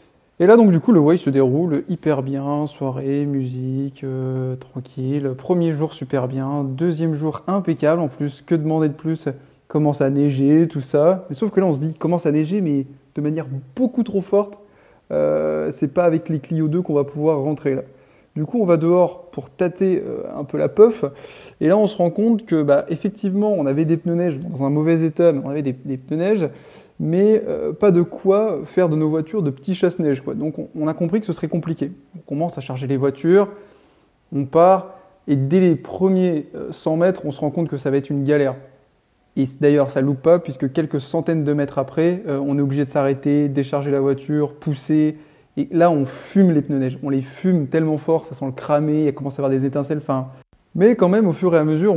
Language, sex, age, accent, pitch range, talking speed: French, male, 20-39, French, 140-175 Hz, 230 wpm